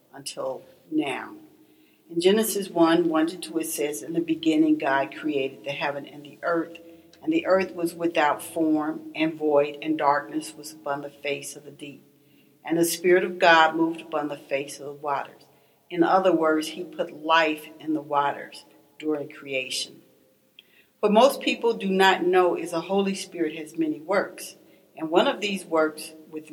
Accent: American